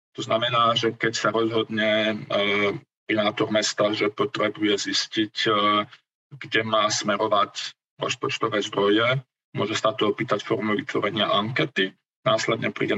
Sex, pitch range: male, 105-125 Hz